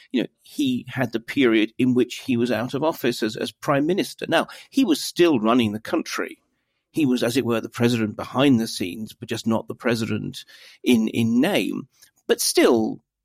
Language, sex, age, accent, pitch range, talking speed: English, male, 40-59, British, 110-160 Hz, 200 wpm